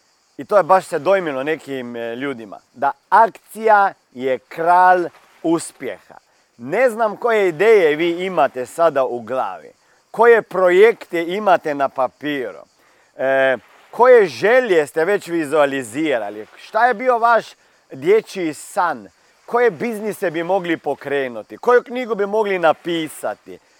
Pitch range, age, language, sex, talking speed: 160-235 Hz, 40-59, Croatian, male, 120 wpm